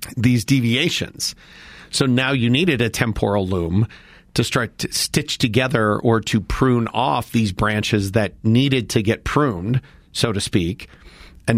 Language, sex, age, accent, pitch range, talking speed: English, male, 40-59, American, 105-125 Hz, 150 wpm